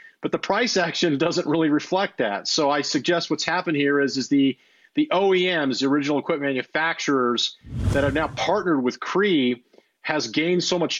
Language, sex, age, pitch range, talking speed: English, male, 40-59, 125-150 Hz, 180 wpm